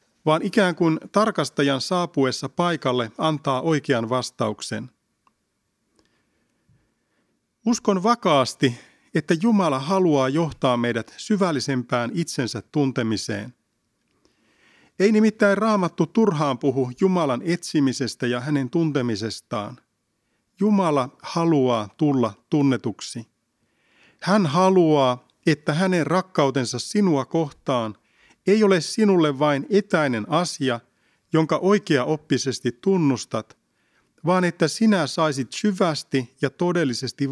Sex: male